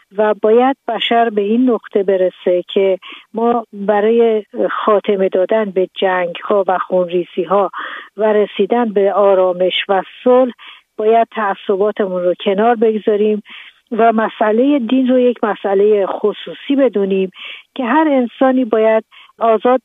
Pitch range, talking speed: 195-240 Hz, 125 wpm